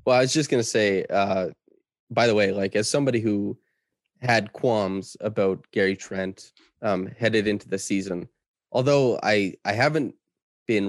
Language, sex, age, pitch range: English, male, 20-39, 95-120 Hz